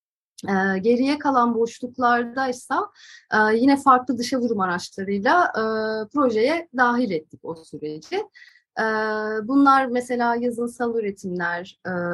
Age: 30-49